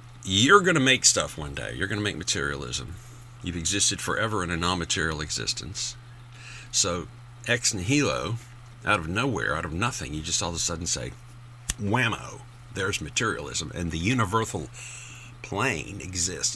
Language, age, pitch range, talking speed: English, 50-69, 115-135 Hz, 155 wpm